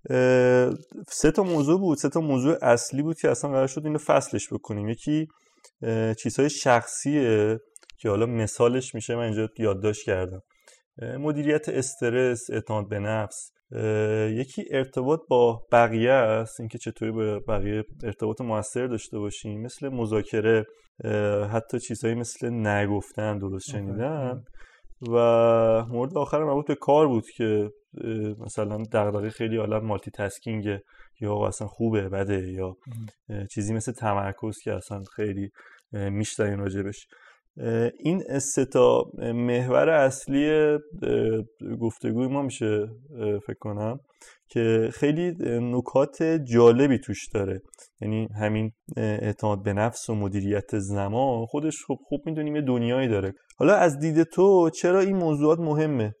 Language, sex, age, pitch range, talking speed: Persian, male, 30-49, 105-135 Hz, 125 wpm